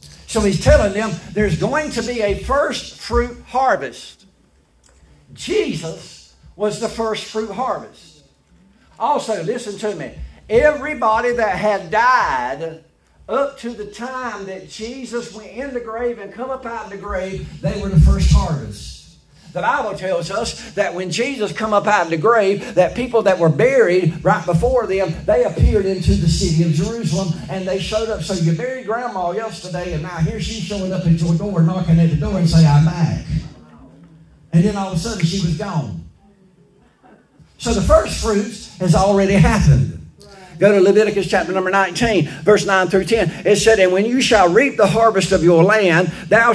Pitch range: 170-225 Hz